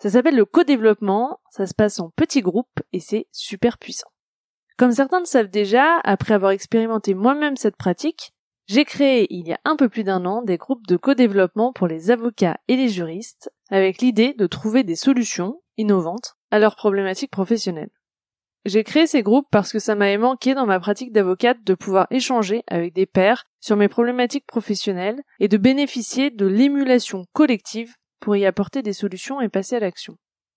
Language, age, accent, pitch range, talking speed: French, 20-39, French, 190-250 Hz, 185 wpm